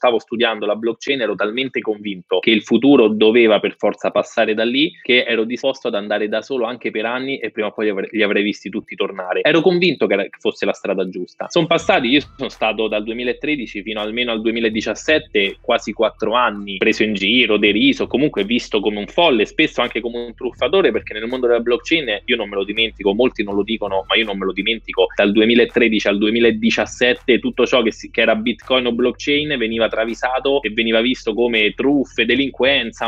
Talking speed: 200 wpm